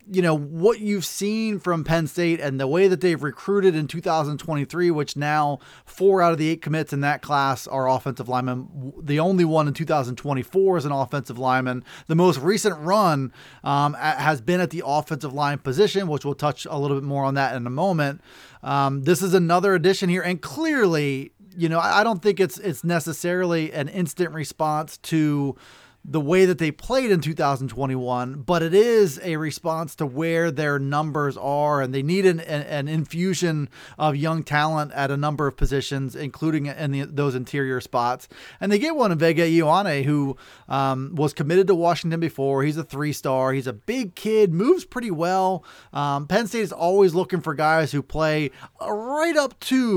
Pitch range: 140-180 Hz